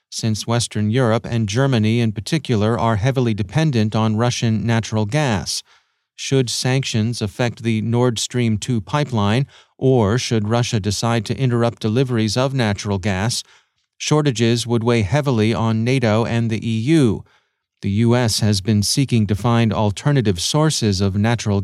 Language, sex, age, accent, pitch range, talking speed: English, male, 30-49, American, 110-135 Hz, 145 wpm